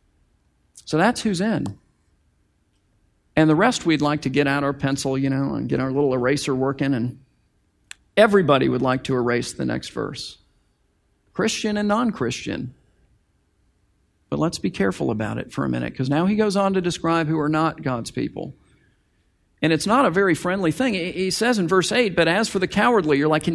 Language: English